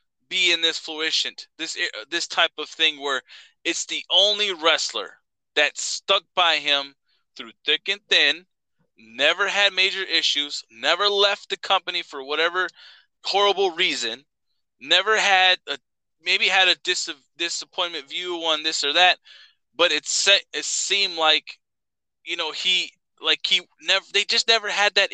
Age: 20-39